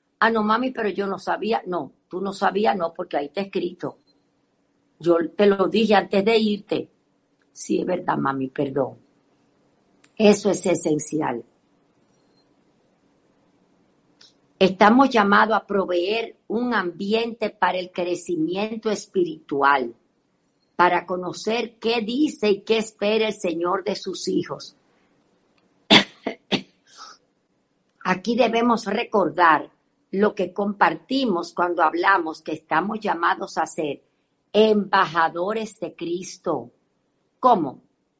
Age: 50-69